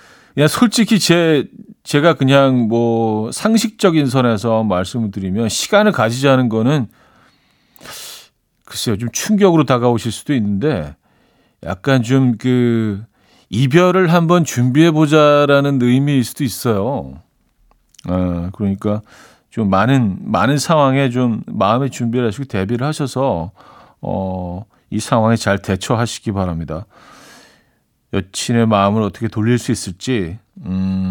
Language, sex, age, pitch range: Korean, male, 40-59, 100-140 Hz